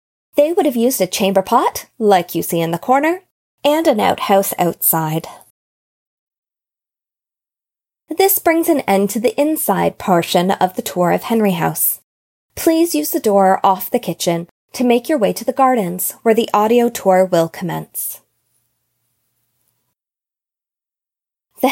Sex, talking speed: female, 145 wpm